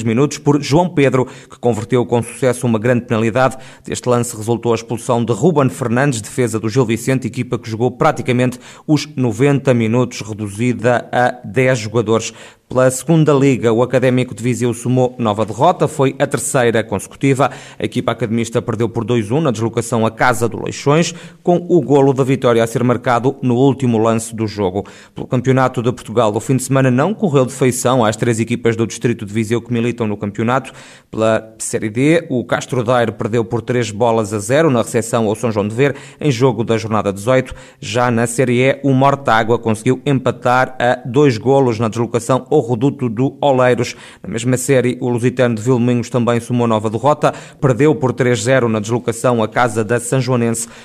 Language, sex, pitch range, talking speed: Portuguese, male, 115-130 Hz, 185 wpm